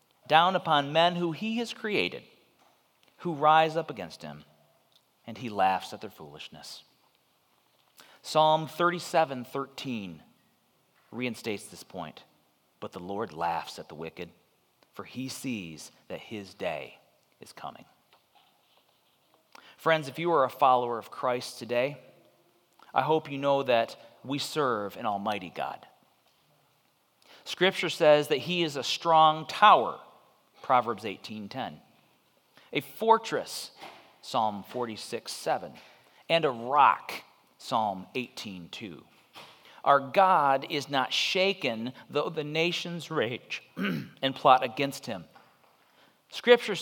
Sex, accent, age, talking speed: male, American, 40-59, 115 wpm